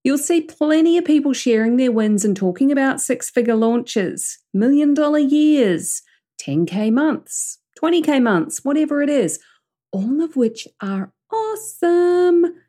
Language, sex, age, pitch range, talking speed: English, female, 40-59, 190-285 Hz, 130 wpm